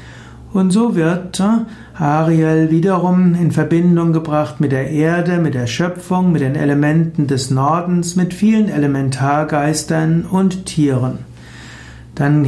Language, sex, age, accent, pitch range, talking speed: German, male, 60-79, German, 145-175 Hz, 120 wpm